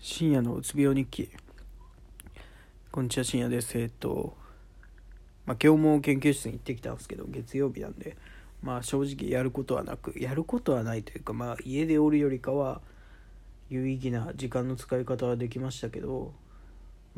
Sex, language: male, Japanese